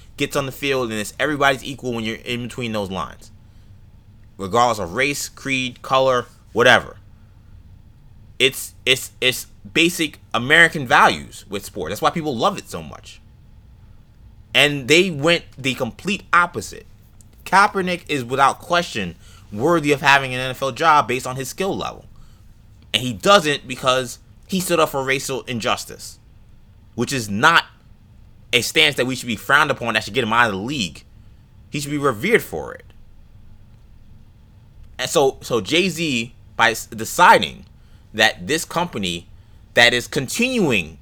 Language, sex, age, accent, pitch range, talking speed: English, male, 20-39, American, 105-150 Hz, 150 wpm